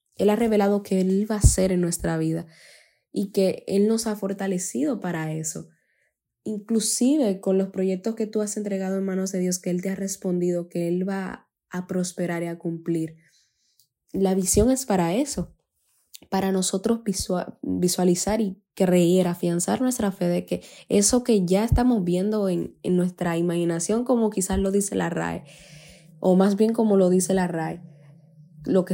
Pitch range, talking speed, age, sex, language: 170-200 Hz, 175 wpm, 10-29, female, Spanish